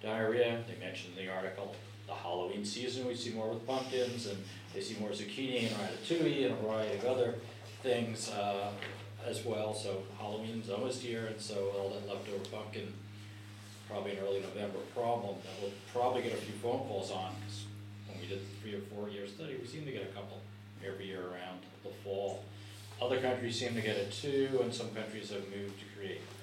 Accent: American